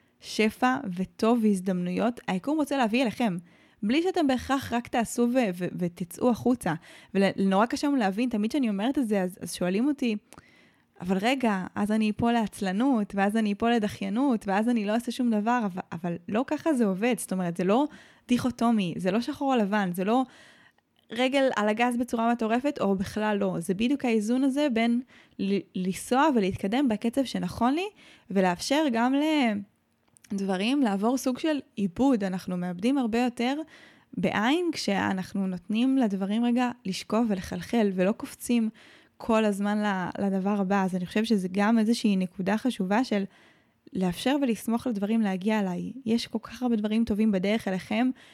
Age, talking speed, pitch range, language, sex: 20-39, 155 wpm, 200-250 Hz, Hebrew, female